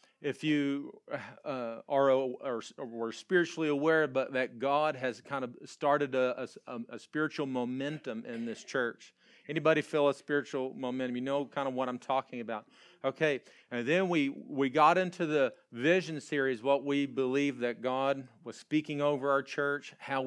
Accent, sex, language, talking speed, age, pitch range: American, male, English, 170 wpm, 40-59, 125-145 Hz